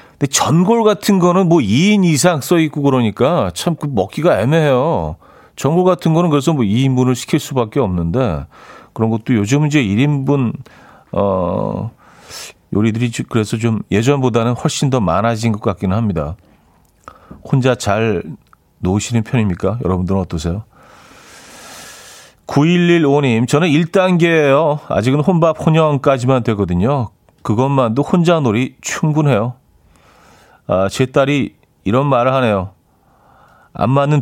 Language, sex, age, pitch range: Korean, male, 40-59, 105-155 Hz